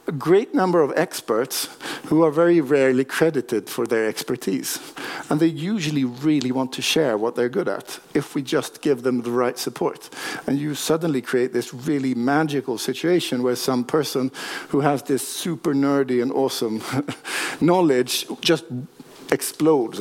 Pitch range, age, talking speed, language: 125-155 Hz, 50-69, 160 wpm, Swedish